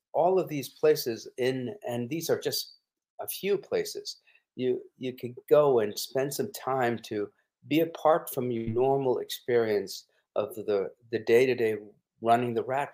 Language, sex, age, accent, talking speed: English, male, 50-69, American, 160 wpm